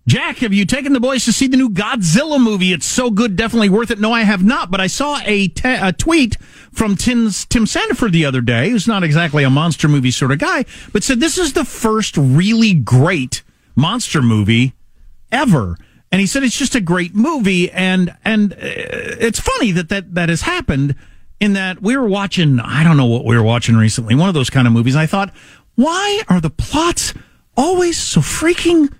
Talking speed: 210 wpm